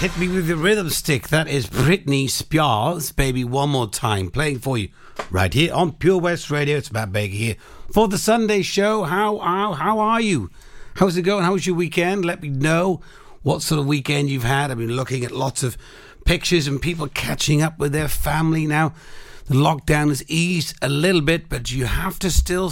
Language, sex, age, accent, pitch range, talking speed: English, male, 60-79, British, 120-165 Hz, 210 wpm